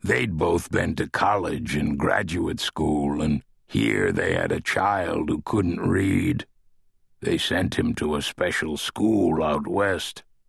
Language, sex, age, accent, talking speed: English, male, 60-79, American, 150 wpm